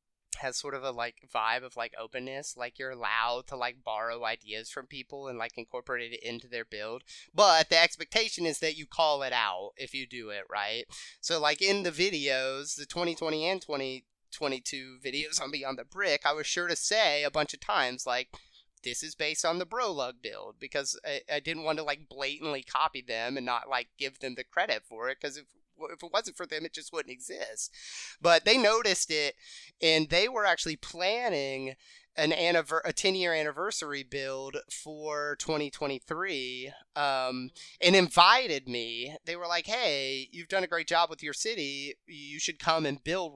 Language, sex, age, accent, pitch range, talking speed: English, male, 30-49, American, 130-165 Hz, 190 wpm